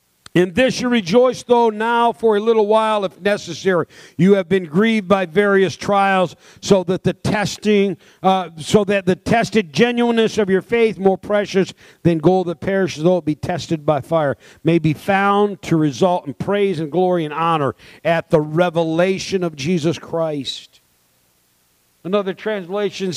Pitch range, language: 160-215 Hz, English